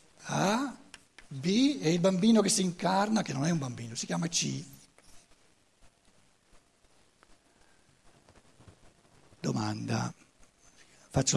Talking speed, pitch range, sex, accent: 95 wpm, 135-220 Hz, male, native